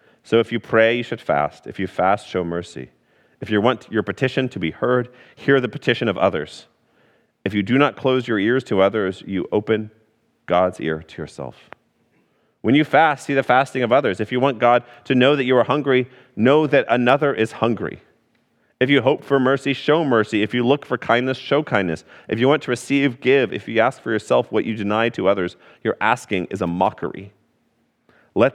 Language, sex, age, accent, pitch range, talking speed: English, male, 30-49, American, 95-130 Hz, 210 wpm